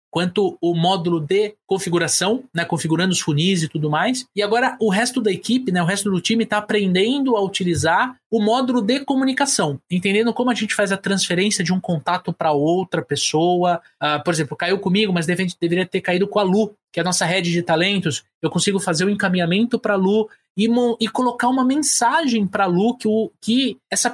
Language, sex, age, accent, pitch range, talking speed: Portuguese, male, 20-39, Brazilian, 175-230 Hz, 200 wpm